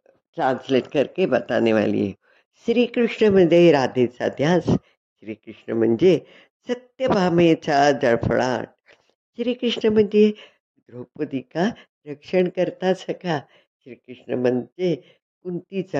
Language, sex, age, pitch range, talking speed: Hindi, female, 60-79, 130-195 Hz, 75 wpm